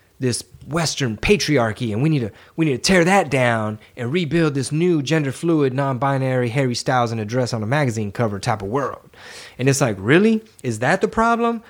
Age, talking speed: 20-39, 200 wpm